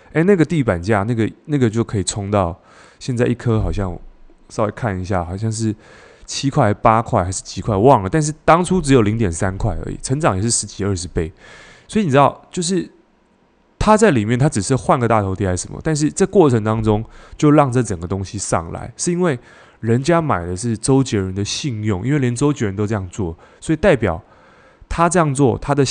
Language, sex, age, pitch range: Chinese, male, 20-39, 100-140 Hz